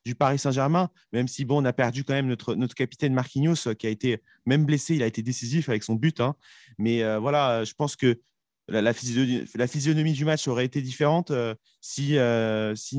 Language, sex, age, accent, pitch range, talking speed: French, male, 30-49, French, 110-140 Hz, 220 wpm